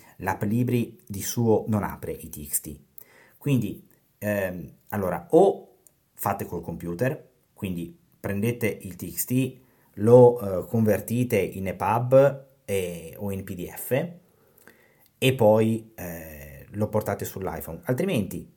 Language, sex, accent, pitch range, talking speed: Italian, male, native, 100-130 Hz, 115 wpm